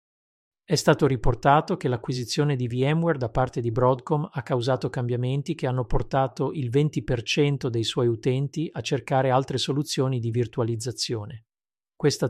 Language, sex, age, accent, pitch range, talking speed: Italian, male, 40-59, native, 120-145 Hz, 140 wpm